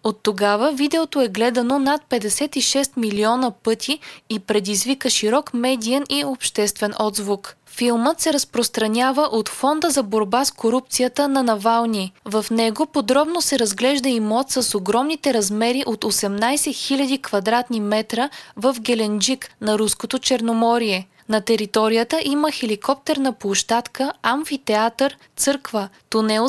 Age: 20-39